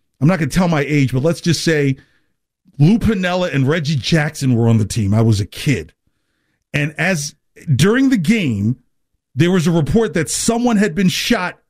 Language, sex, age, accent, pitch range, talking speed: English, male, 40-59, American, 135-195 Hz, 195 wpm